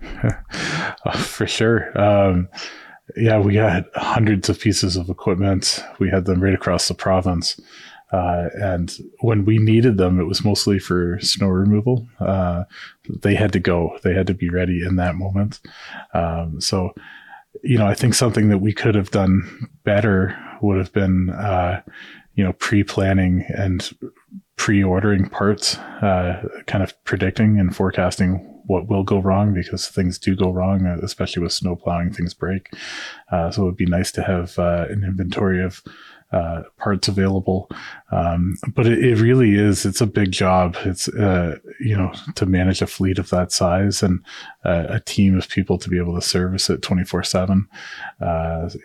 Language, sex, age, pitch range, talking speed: English, male, 20-39, 90-100 Hz, 170 wpm